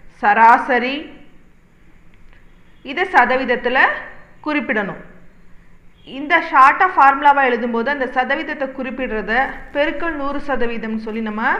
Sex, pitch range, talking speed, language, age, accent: female, 225-275 Hz, 85 wpm, Tamil, 40-59, native